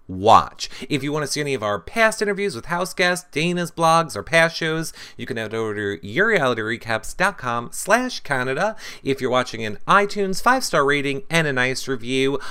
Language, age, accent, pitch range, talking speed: English, 30-49, American, 120-185 Hz, 180 wpm